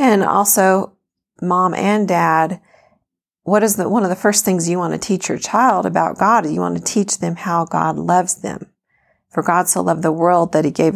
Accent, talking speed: American, 215 wpm